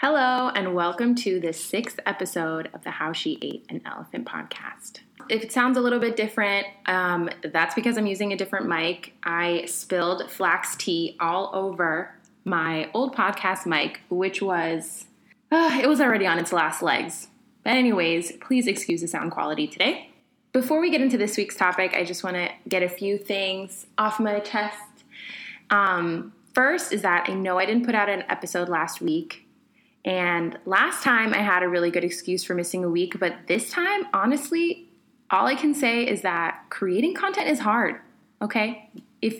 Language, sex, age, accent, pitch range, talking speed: English, female, 20-39, American, 180-250 Hz, 180 wpm